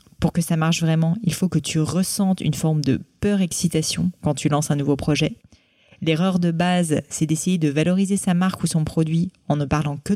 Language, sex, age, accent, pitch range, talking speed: French, female, 30-49, French, 150-180 Hz, 220 wpm